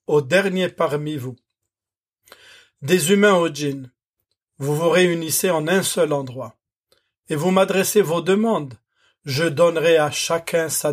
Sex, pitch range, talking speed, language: male, 140-175 Hz, 135 wpm, French